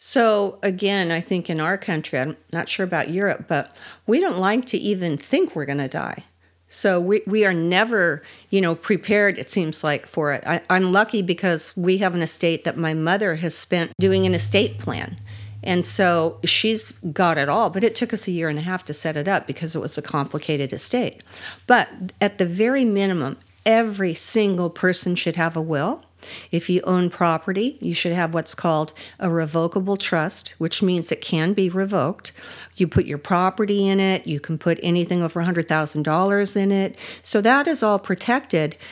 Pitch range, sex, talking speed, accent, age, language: 160-200 Hz, female, 195 wpm, American, 50-69, English